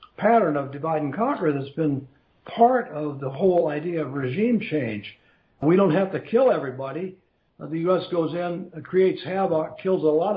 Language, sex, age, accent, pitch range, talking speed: English, male, 60-79, American, 150-180 Hz, 175 wpm